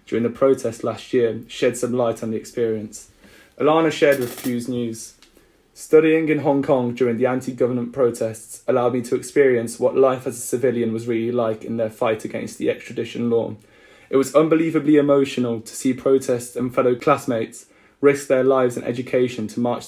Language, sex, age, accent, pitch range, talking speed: English, male, 20-39, British, 120-135 Hz, 180 wpm